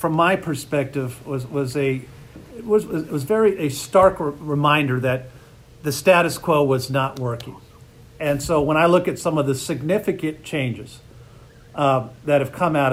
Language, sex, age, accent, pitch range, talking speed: English, male, 50-69, American, 130-160 Hz, 175 wpm